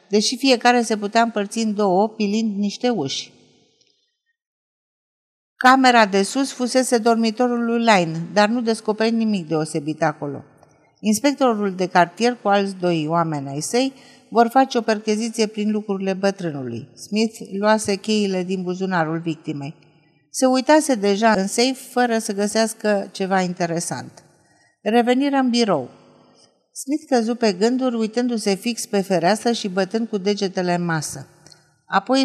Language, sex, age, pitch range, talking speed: Romanian, female, 50-69, 180-240 Hz, 135 wpm